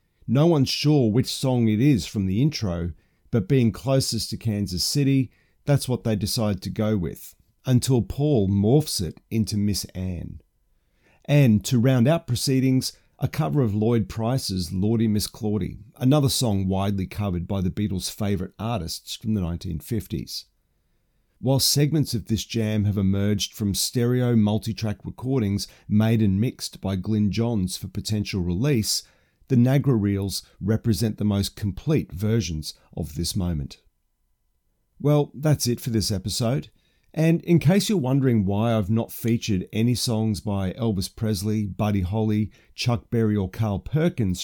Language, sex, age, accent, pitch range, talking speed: English, male, 40-59, Australian, 100-125 Hz, 155 wpm